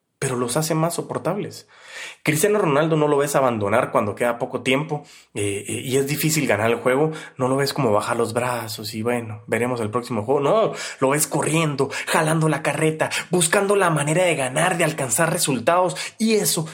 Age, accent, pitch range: 30-49, Mexican, 120-155 Hz